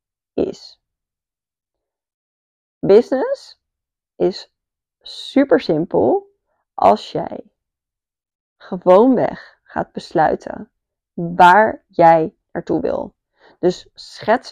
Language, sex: Dutch, female